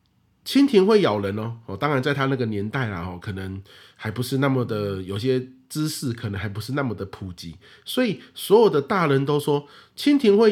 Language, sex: Chinese, male